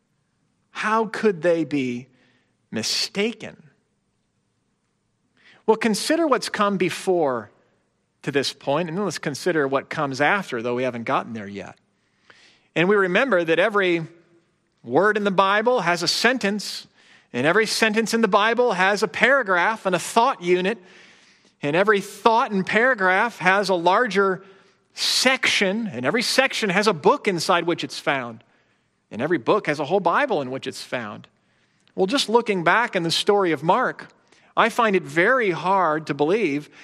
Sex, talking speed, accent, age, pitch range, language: male, 160 wpm, American, 40-59, 175-230 Hz, English